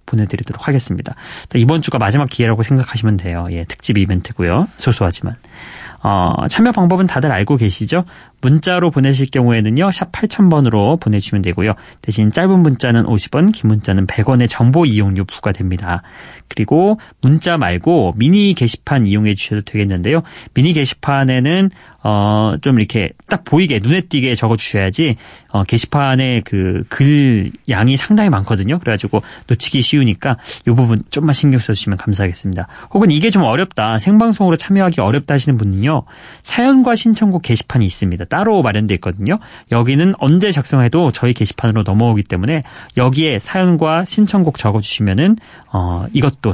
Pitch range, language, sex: 105-155 Hz, Korean, male